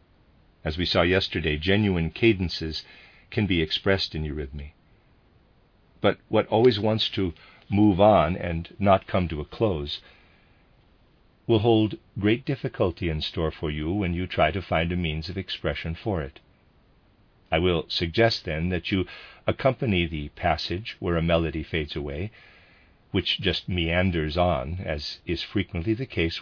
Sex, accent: male, American